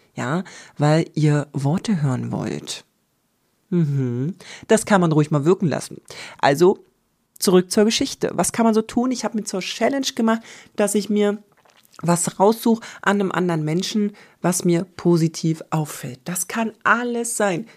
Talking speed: 155 wpm